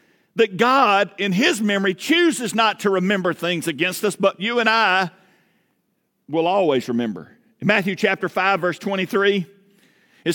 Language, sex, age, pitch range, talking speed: English, male, 50-69, 185-210 Hz, 145 wpm